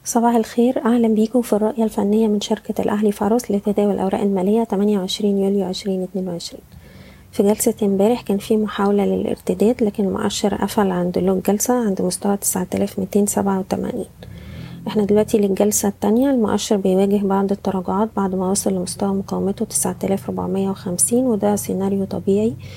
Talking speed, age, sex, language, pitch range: 135 wpm, 20-39, female, Arabic, 195-220 Hz